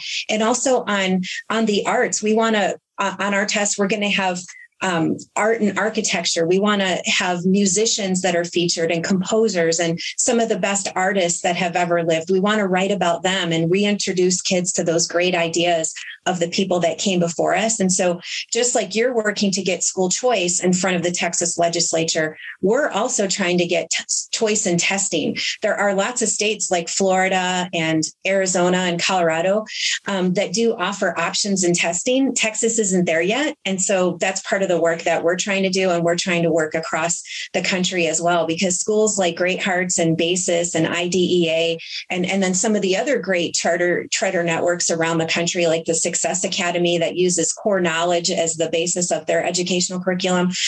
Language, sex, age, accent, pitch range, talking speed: English, female, 30-49, American, 170-200 Hz, 200 wpm